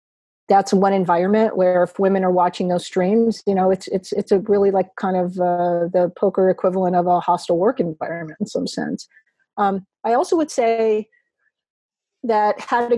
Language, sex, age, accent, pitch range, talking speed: English, female, 40-59, American, 190-235 Hz, 185 wpm